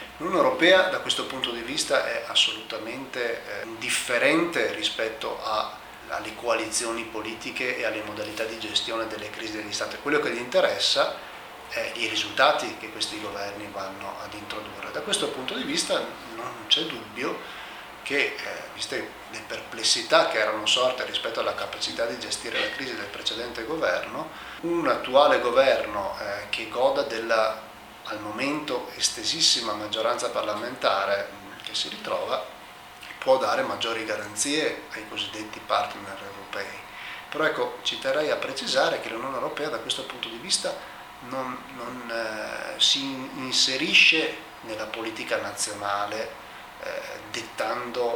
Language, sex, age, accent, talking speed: Italian, male, 30-49, native, 140 wpm